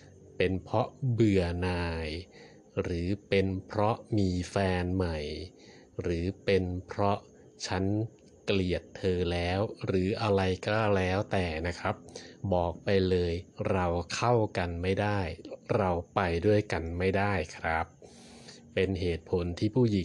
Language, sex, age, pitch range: Thai, male, 20-39, 85-105 Hz